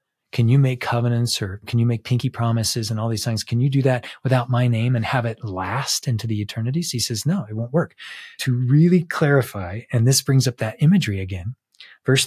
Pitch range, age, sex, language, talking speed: 105-130 Hz, 20-39, male, English, 220 wpm